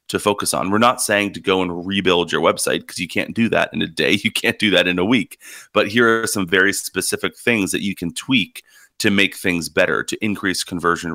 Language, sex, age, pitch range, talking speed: English, male, 30-49, 90-105 Hz, 240 wpm